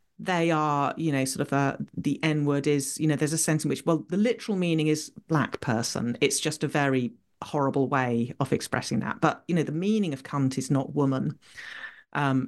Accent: British